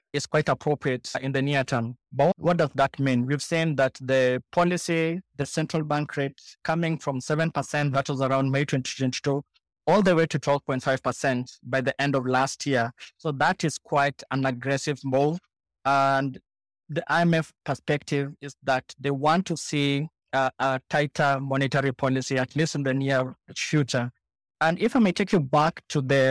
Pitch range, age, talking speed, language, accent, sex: 135-155 Hz, 20-39, 175 wpm, English, South African, male